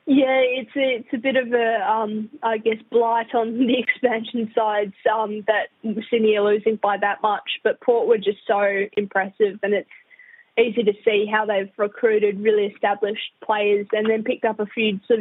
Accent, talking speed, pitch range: Australian, 190 wpm, 210-230 Hz